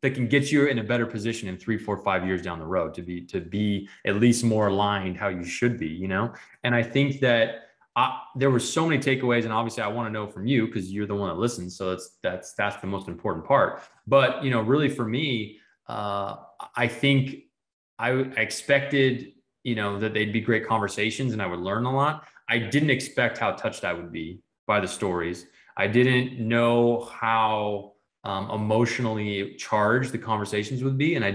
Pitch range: 100-125 Hz